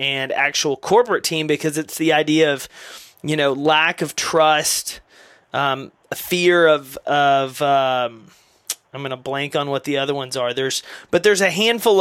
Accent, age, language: American, 30-49, English